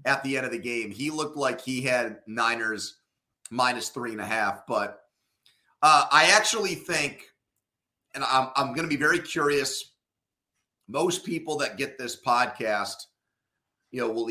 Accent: American